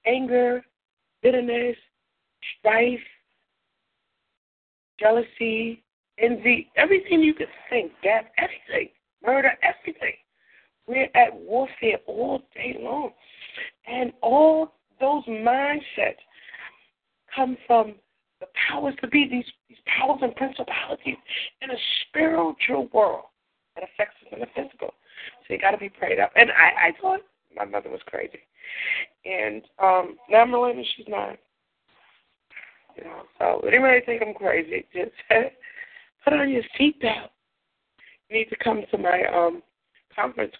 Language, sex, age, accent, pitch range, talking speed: English, female, 60-79, American, 215-295 Hz, 125 wpm